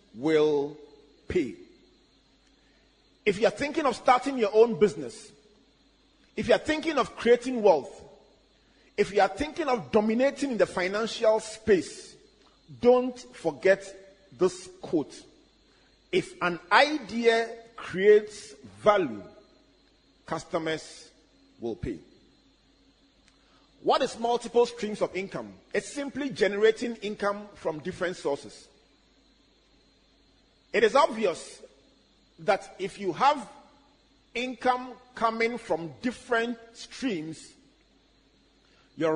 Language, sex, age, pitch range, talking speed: English, male, 40-59, 175-250 Hz, 100 wpm